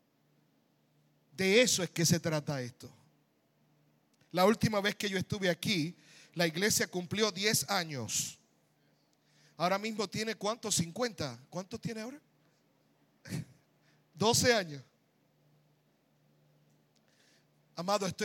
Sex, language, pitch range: male, Spanish, 130-200 Hz